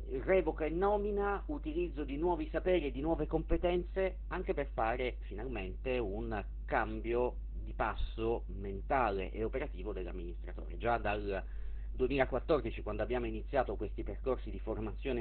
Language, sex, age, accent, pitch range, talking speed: Italian, male, 50-69, native, 105-150 Hz, 130 wpm